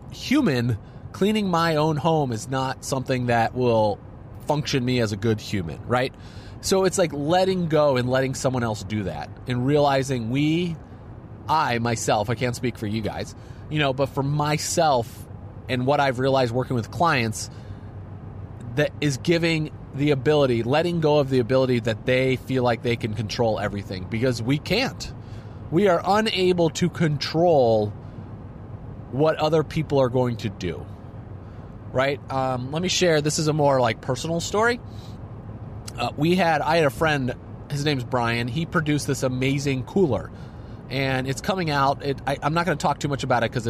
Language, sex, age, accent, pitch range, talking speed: English, male, 30-49, American, 115-150 Hz, 170 wpm